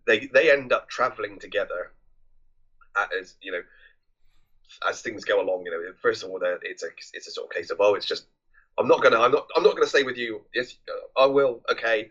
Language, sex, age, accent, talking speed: English, male, 30-49, British, 220 wpm